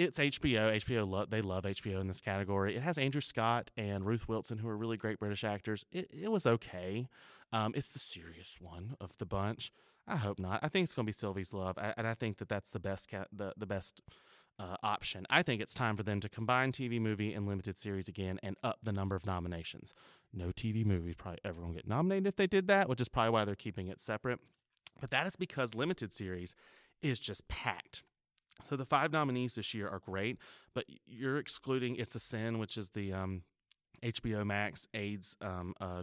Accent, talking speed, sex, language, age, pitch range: American, 220 wpm, male, English, 30-49, 100-125 Hz